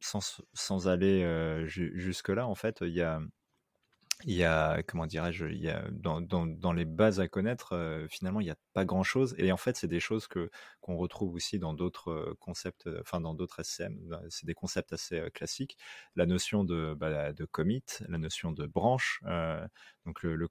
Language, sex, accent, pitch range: French, male, French, 80-95 Hz